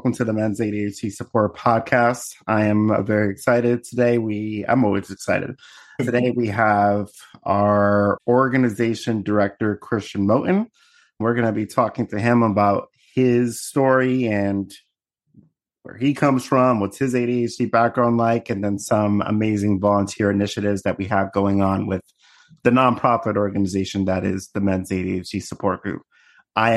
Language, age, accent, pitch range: English, 30-49, American, 100-120 Hz